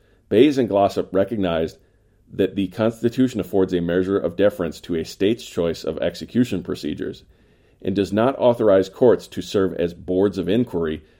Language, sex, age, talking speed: English, male, 40-59, 160 wpm